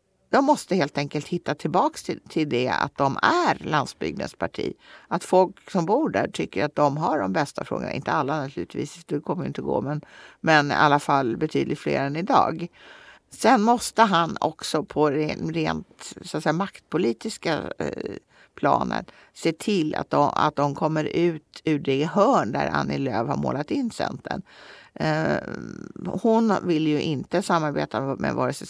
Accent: Swedish